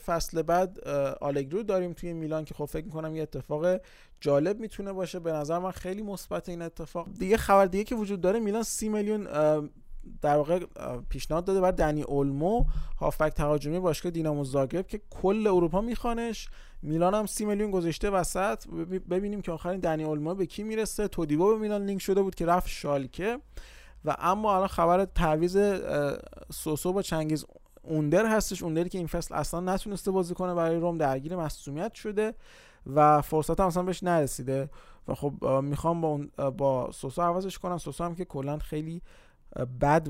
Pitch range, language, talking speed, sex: 150-190 Hz, Persian, 170 wpm, male